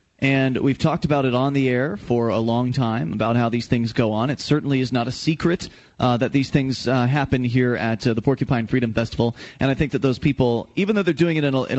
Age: 30-49